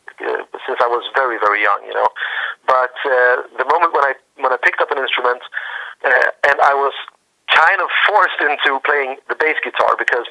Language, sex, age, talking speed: English, male, 40-59, 200 wpm